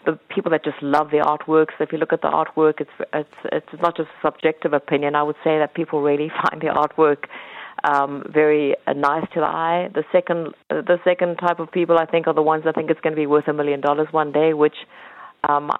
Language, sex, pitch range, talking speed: English, female, 155-175 Hz, 245 wpm